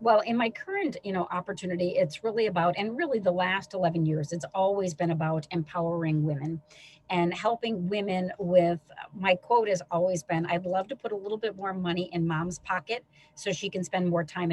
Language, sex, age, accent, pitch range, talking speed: English, female, 40-59, American, 170-200 Hz, 200 wpm